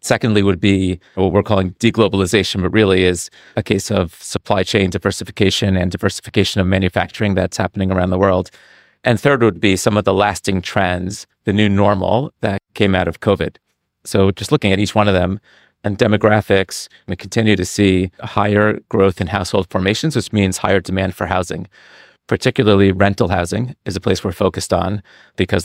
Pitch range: 90-105 Hz